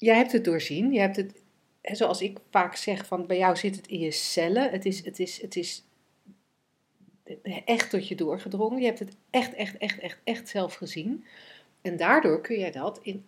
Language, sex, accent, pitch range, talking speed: Dutch, female, Dutch, 165-215 Hz, 205 wpm